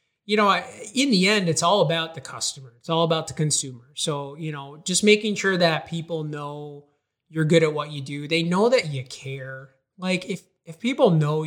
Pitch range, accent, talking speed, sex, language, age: 145-185 Hz, American, 210 wpm, male, English, 30-49